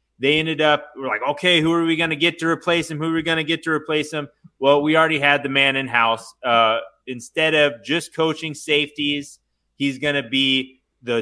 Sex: male